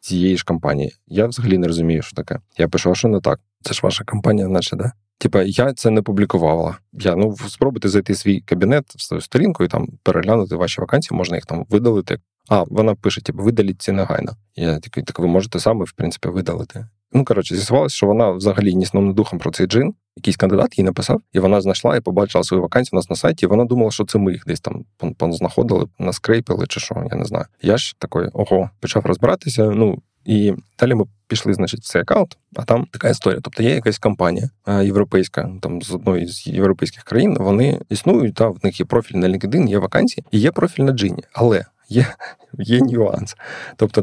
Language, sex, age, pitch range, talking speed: Ukrainian, male, 20-39, 95-115 Hz, 210 wpm